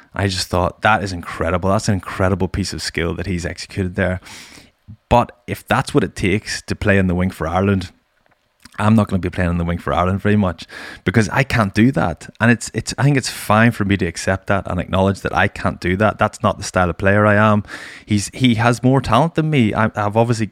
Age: 20-39